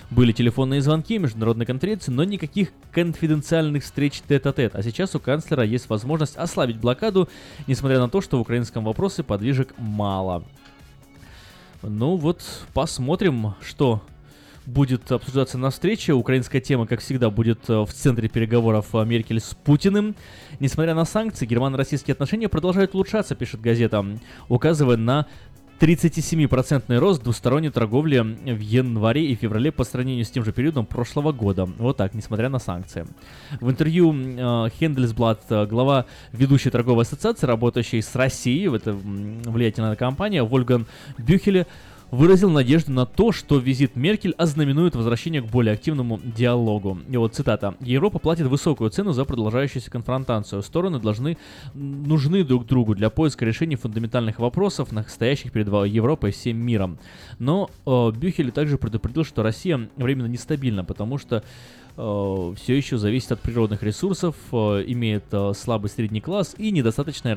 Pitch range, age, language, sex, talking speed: 115-150 Hz, 20-39, Russian, male, 145 wpm